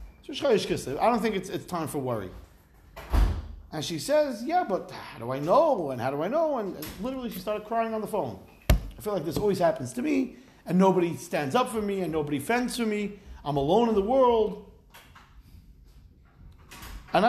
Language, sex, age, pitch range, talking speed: English, male, 40-59, 130-215 Hz, 190 wpm